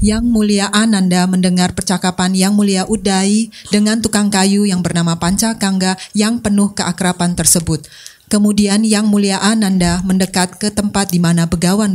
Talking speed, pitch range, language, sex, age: 140 wpm, 175-210 Hz, Indonesian, female, 30-49